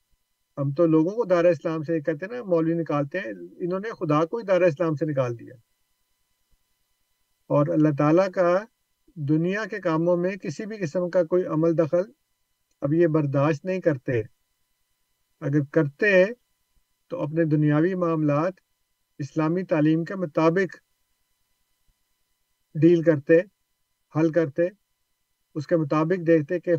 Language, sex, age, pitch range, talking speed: Urdu, male, 50-69, 140-175 Hz, 135 wpm